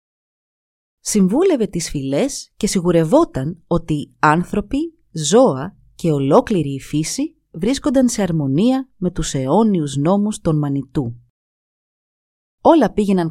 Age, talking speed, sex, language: 30-49, 105 wpm, female, Greek